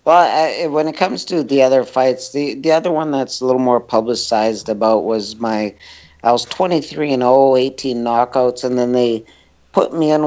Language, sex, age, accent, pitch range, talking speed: English, male, 50-69, American, 115-140 Hz, 210 wpm